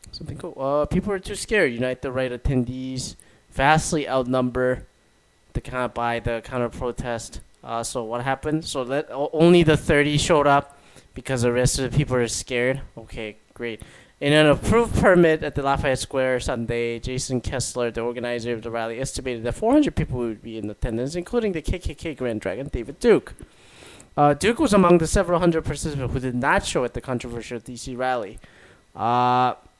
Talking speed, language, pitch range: 185 wpm, English, 120-155 Hz